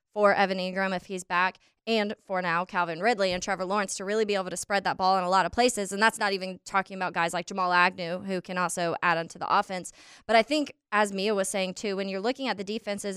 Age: 20-39